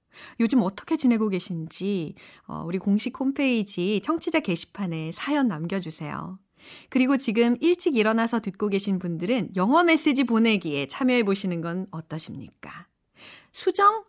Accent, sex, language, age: native, female, Korean, 40-59